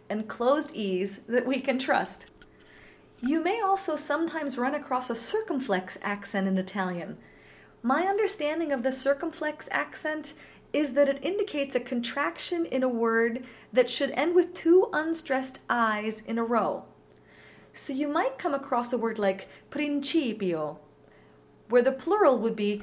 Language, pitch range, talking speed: English, 225-295 Hz, 150 wpm